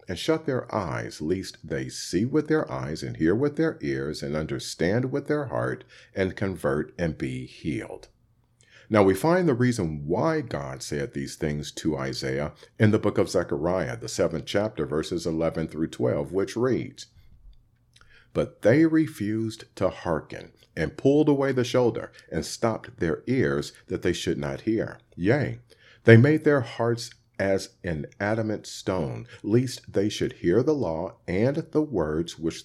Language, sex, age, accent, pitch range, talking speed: English, male, 50-69, American, 85-125 Hz, 165 wpm